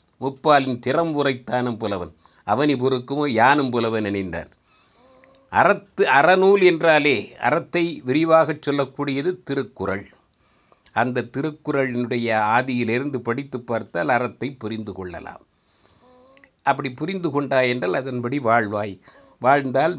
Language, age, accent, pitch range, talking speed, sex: Tamil, 50-69, native, 120-155 Hz, 85 wpm, male